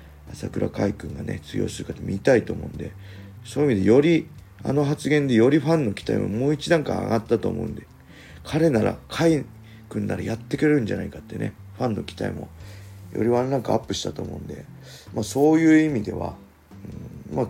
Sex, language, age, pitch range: male, Japanese, 40-59, 85-125 Hz